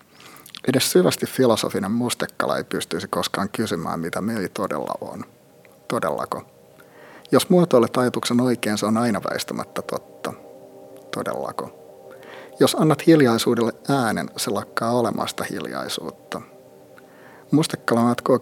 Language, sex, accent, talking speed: Finnish, male, native, 110 wpm